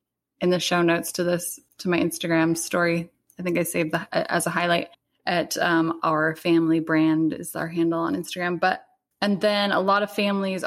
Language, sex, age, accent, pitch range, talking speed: English, female, 20-39, American, 160-180 Hz, 195 wpm